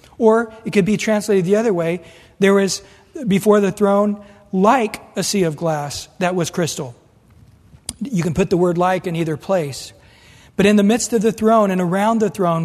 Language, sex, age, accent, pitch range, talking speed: English, male, 40-59, American, 170-220 Hz, 195 wpm